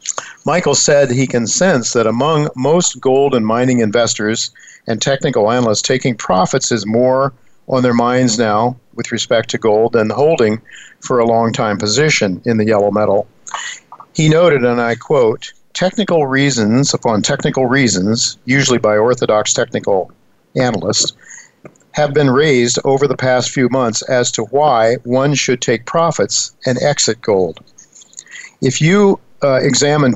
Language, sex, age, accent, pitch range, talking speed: English, male, 50-69, American, 115-140 Hz, 150 wpm